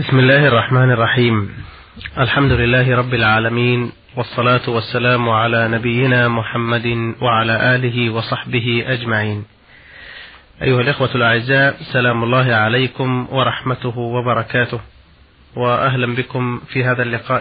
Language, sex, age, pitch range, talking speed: Arabic, male, 30-49, 115-130 Hz, 105 wpm